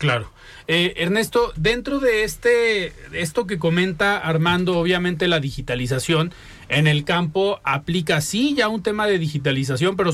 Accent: Mexican